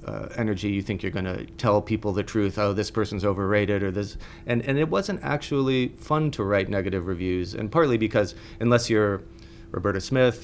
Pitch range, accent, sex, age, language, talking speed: 95-110 Hz, American, male, 30-49, English, 190 wpm